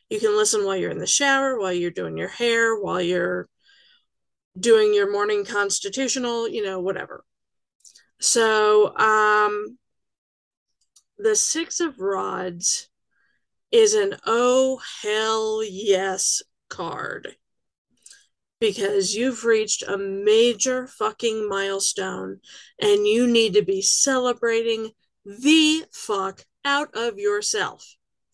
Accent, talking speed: American, 110 wpm